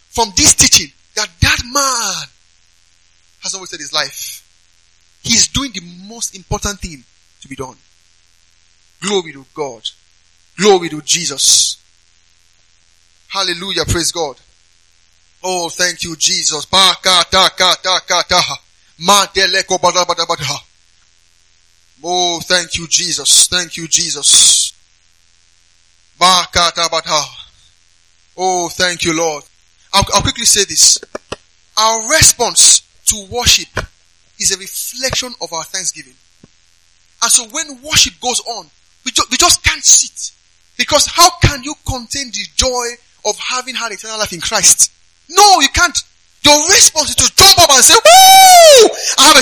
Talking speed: 120 wpm